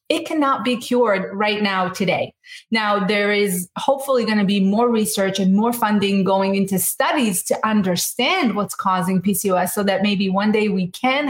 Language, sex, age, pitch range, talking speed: English, female, 30-49, 195-240 Hz, 180 wpm